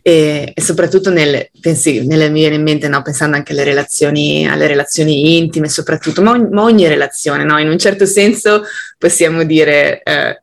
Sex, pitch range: female, 150-185 Hz